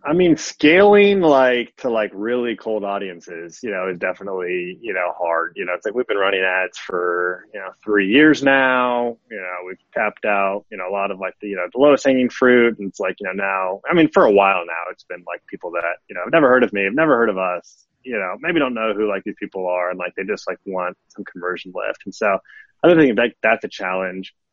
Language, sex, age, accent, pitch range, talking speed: English, male, 30-49, American, 95-125 Hz, 255 wpm